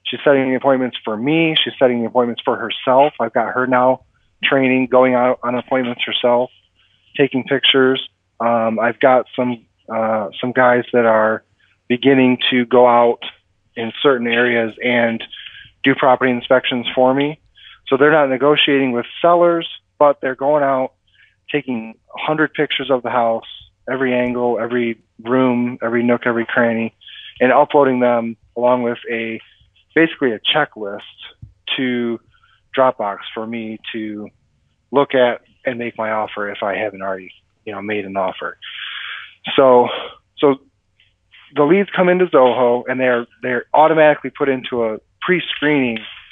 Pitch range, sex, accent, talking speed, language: 110-130 Hz, male, American, 150 wpm, English